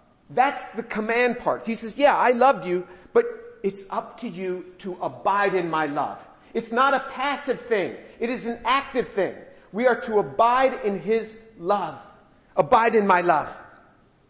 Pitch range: 205-270 Hz